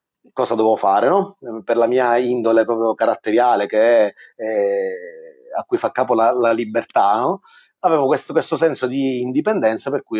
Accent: native